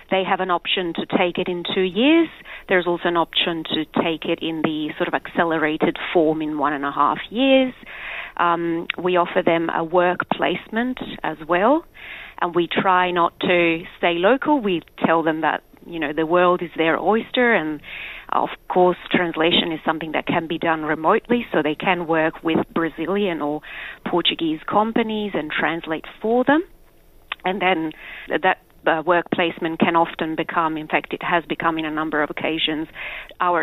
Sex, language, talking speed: female, Portuguese, 175 wpm